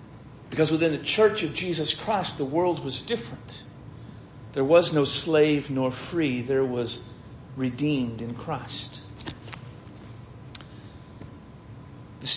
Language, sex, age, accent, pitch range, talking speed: English, male, 50-69, American, 125-155 Hz, 110 wpm